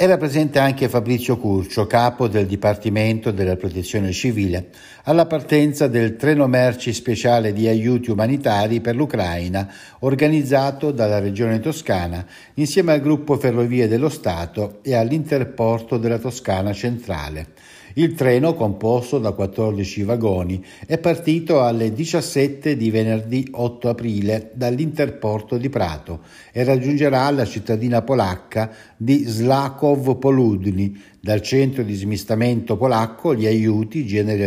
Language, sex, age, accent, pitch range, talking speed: Italian, male, 60-79, native, 100-135 Hz, 120 wpm